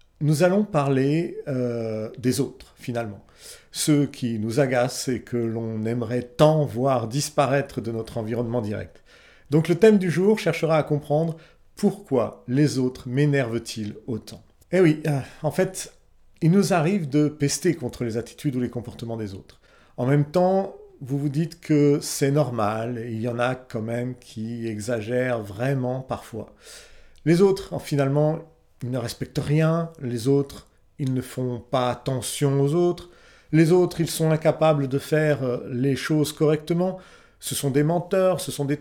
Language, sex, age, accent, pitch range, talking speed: French, male, 40-59, French, 120-160 Hz, 160 wpm